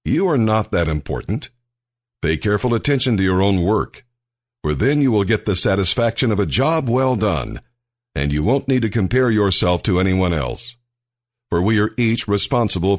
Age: 60-79